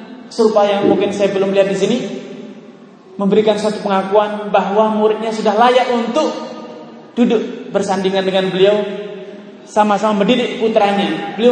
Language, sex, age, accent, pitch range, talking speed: Indonesian, male, 20-39, native, 190-230 Hz, 125 wpm